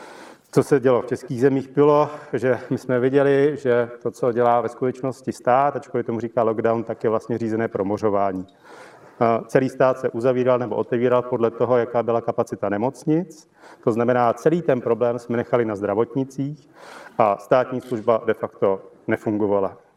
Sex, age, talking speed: male, 40-59, 160 wpm